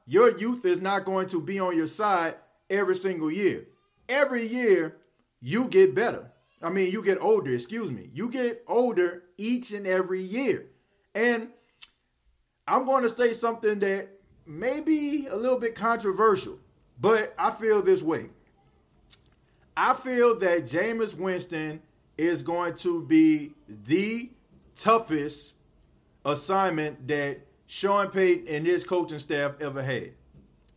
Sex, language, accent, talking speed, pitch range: male, English, American, 140 wpm, 155-210 Hz